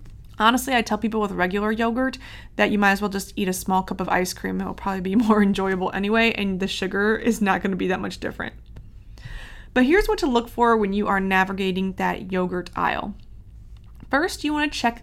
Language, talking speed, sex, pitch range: English, 210 wpm, female, 190-245 Hz